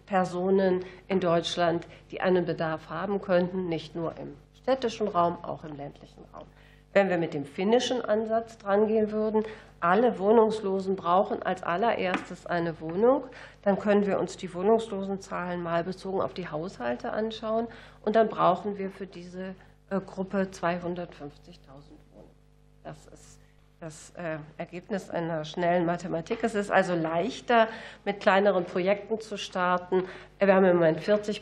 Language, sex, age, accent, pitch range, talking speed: German, female, 40-59, German, 170-205 Hz, 140 wpm